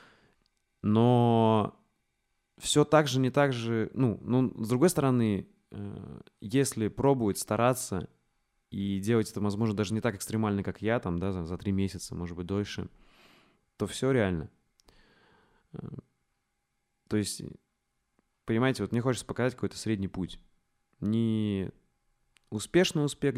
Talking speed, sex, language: 130 wpm, male, Russian